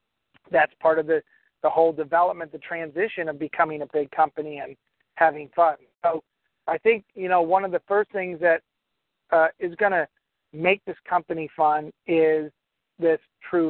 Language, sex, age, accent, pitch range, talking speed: English, male, 50-69, American, 155-185 Hz, 170 wpm